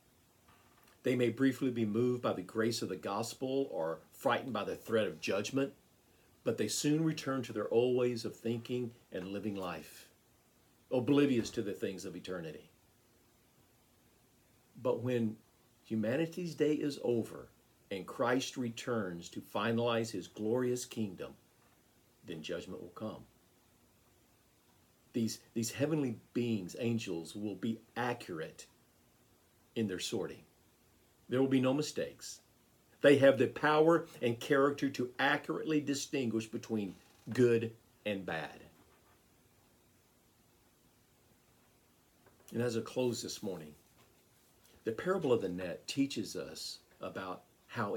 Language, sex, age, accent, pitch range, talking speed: English, male, 50-69, American, 115-140 Hz, 125 wpm